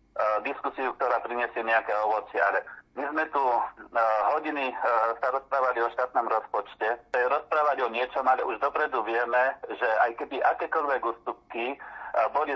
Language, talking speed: Slovak, 145 wpm